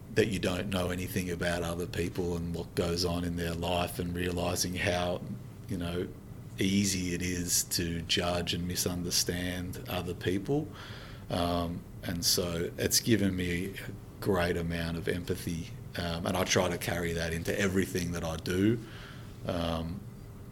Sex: male